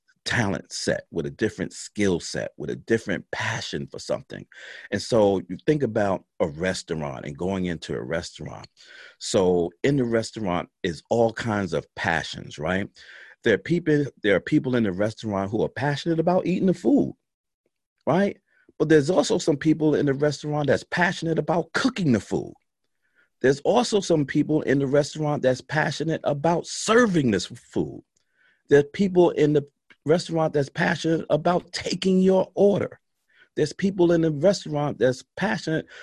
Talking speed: 165 wpm